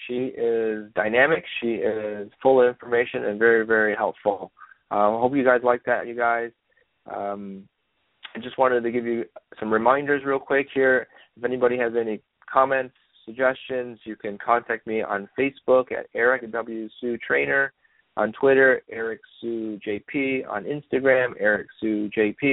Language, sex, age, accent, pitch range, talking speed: English, male, 30-49, American, 110-130 Hz, 155 wpm